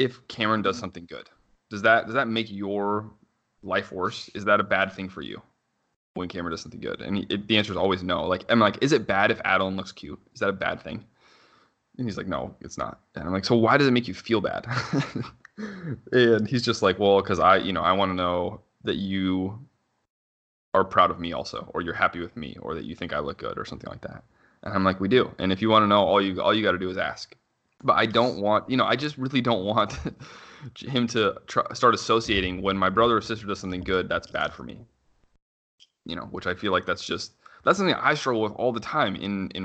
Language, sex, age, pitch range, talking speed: English, male, 20-39, 95-120 Hz, 250 wpm